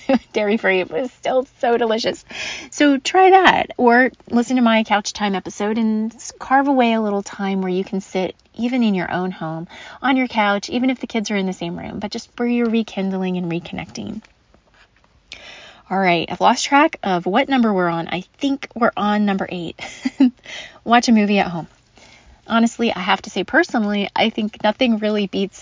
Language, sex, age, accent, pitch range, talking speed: English, female, 30-49, American, 190-245 Hz, 195 wpm